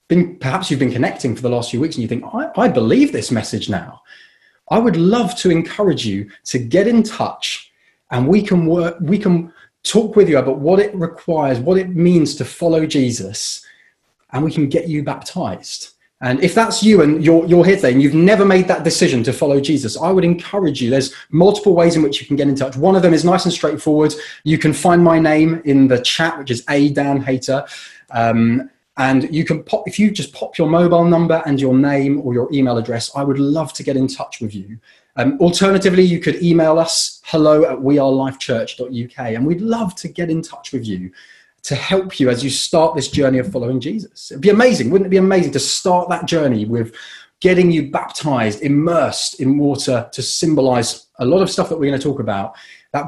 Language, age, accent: English, 20-39, British